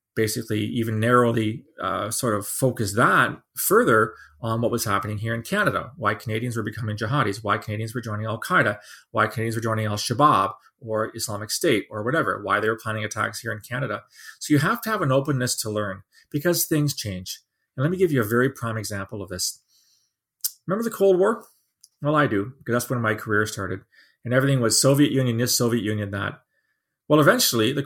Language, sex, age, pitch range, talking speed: English, male, 30-49, 110-150 Hz, 200 wpm